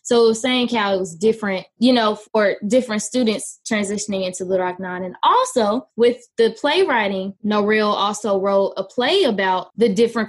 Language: English